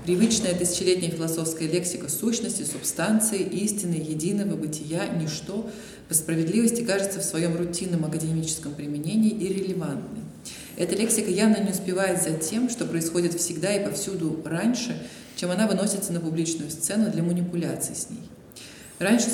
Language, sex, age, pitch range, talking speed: Russian, female, 20-39, 160-200 Hz, 135 wpm